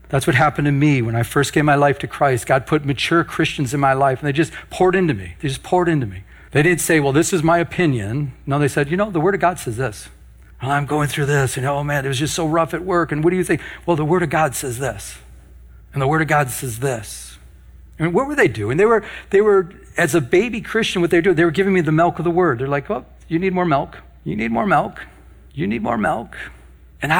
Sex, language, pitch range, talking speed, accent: male, English, 115-165 Hz, 275 wpm, American